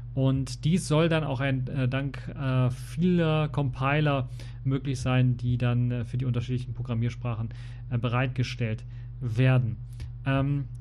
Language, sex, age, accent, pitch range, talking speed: German, male, 40-59, German, 120-140 Hz, 135 wpm